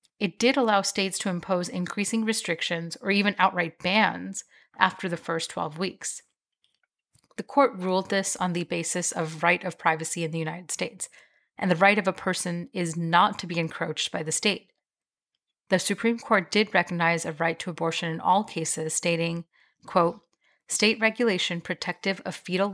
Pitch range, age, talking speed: 170-200 Hz, 30-49, 170 wpm